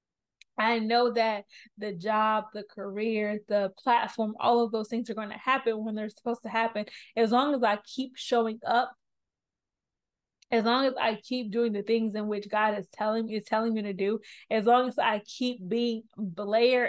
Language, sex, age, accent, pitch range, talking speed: English, female, 20-39, American, 215-240 Hz, 190 wpm